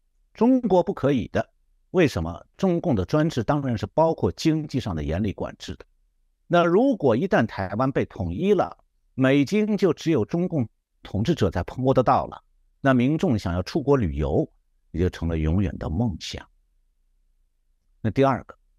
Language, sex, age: Chinese, male, 50-69